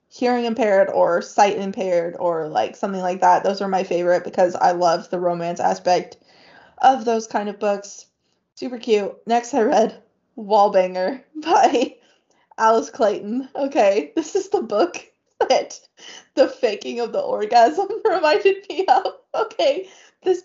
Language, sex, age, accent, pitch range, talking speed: English, female, 20-39, American, 195-280 Hz, 145 wpm